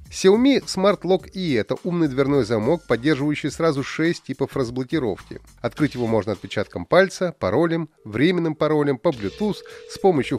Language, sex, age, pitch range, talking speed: Russian, male, 30-49, 115-175 Hz, 150 wpm